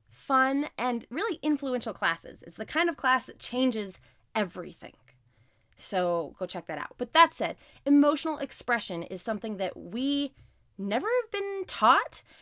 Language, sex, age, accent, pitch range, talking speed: English, female, 20-39, American, 175-260 Hz, 150 wpm